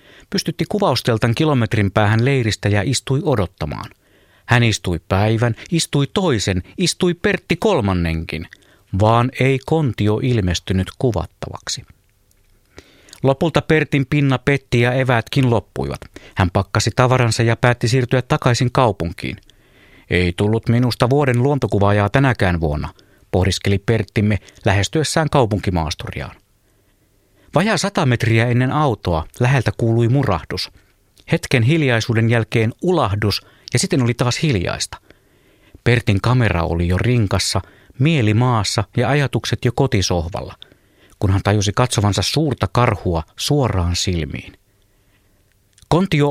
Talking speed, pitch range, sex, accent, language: 110 wpm, 100-130 Hz, male, native, Finnish